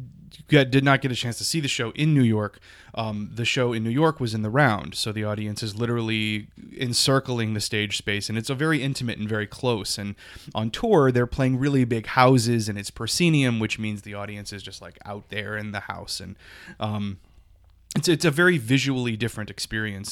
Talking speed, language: 210 wpm, English